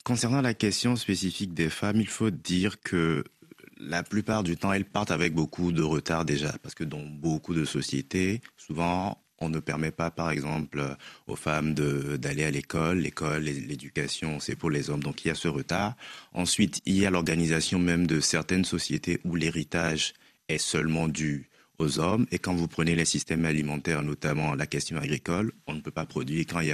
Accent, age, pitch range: French, 30-49, 75-90 Hz